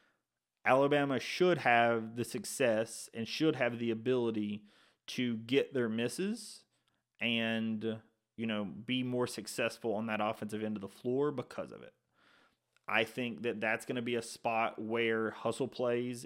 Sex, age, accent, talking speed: male, 30-49, American, 155 wpm